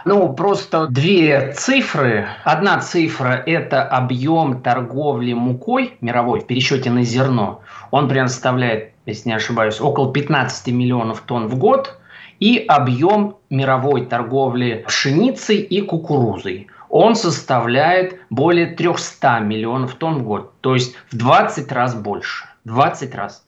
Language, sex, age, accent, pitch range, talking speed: Russian, male, 20-39, native, 120-155 Hz, 130 wpm